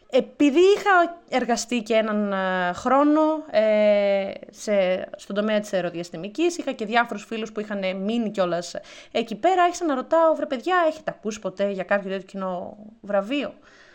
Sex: female